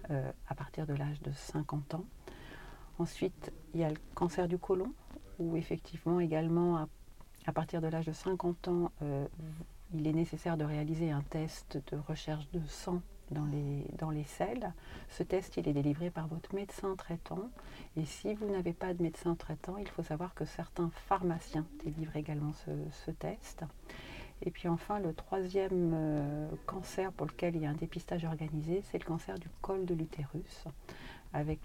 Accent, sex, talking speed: French, female, 180 wpm